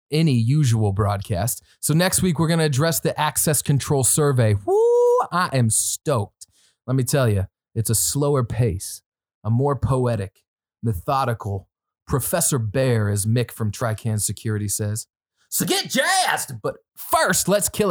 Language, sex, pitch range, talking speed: English, male, 120-170 Hz, 150 wpm